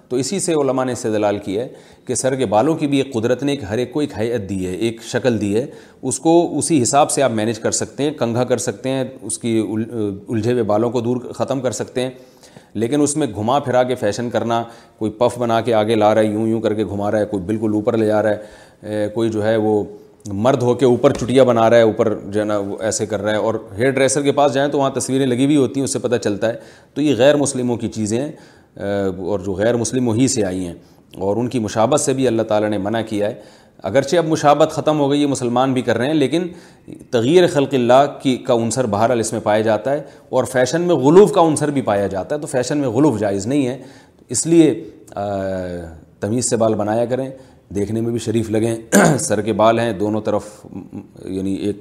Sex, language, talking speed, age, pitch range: male, Urdu, 245 wpm, 30-49, 105-130 Hz